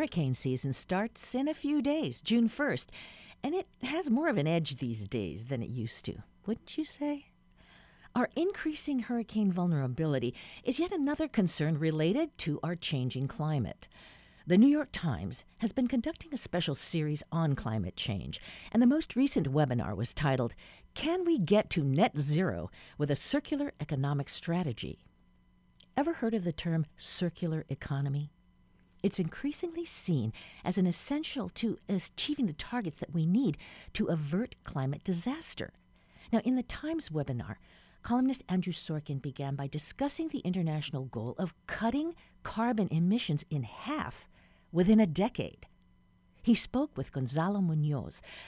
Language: English